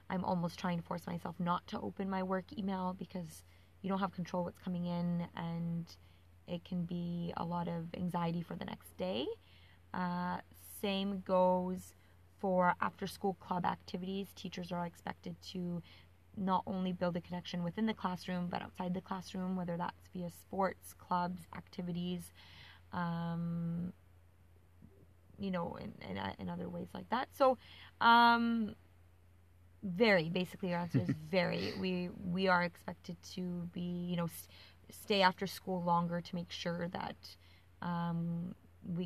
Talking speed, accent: 150 wpm, American